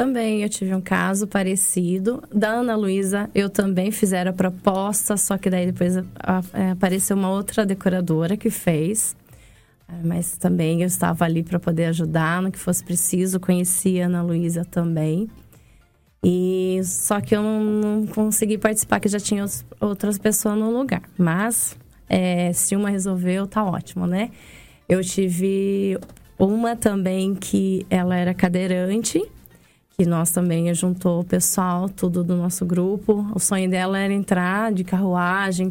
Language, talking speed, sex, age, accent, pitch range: Portuguese, 150 wpm, female, 20-39, Brazilian, 180-210 Hz